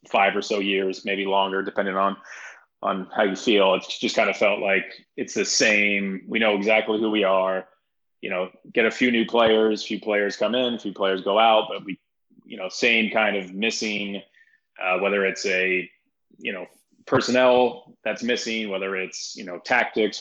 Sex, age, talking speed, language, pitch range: male, 30-49, 190 wpm, English, 95-110 Hz